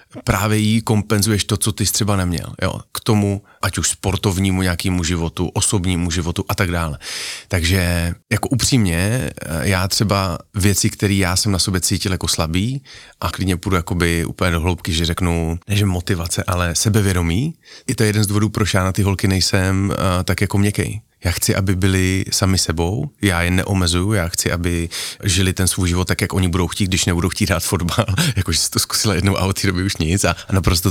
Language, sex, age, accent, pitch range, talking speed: Czech, male, 30-49, native, 90-105 Hz, 200 wpm